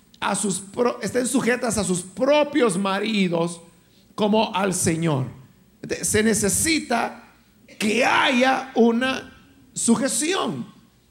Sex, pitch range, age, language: male, 195-265 Hz, 50-69, Spanish